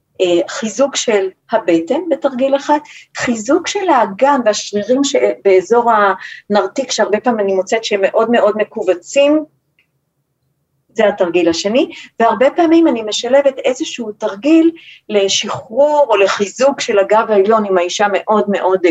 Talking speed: 120 wpm